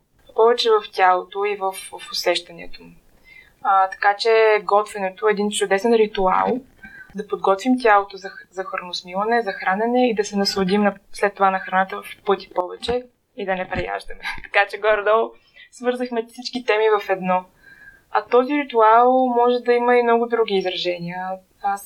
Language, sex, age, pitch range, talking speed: Bulgarian, female, 20-39, 180-220 Hz, 160 wpm